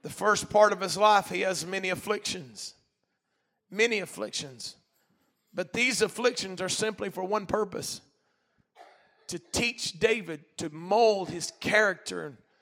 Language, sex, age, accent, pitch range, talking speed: English, male, 40-59, American, 210-315 Hz, 130 wpm